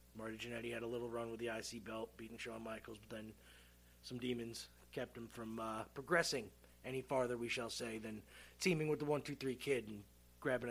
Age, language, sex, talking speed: 30-49, English, male, 195 wpm